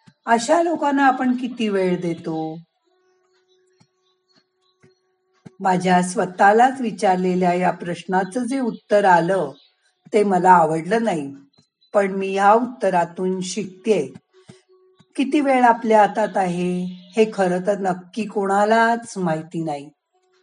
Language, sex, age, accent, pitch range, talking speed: Marathi, female, 50-69, native, 185-245 Hz, 105 wpm